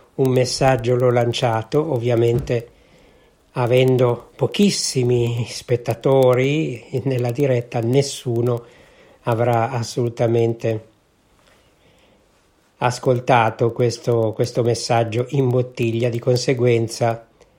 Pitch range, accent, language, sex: 115-130 Hz, native, Italian, male